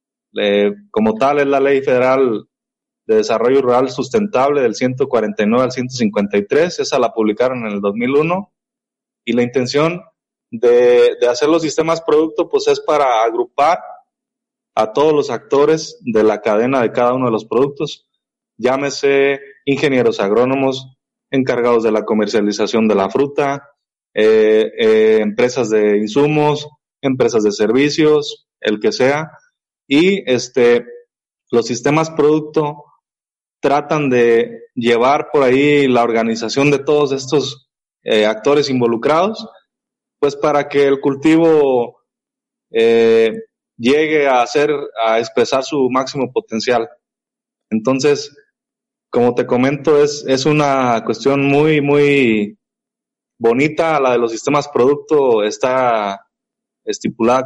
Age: 20-39